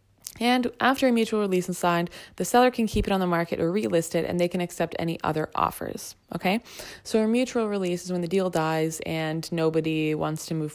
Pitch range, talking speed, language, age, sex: 170-220 Hz, 225 wpm, English, 20-39, female